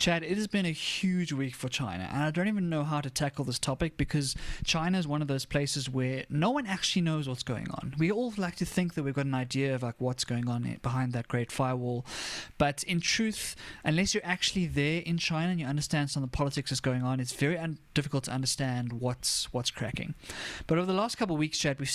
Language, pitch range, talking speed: English, 130-165 Hz, 245 wpm